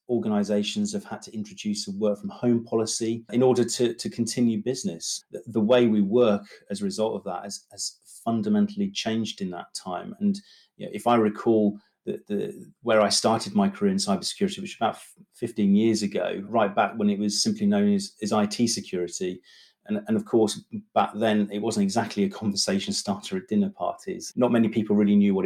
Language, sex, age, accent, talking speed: English, male, 40-59, British, 200 wpm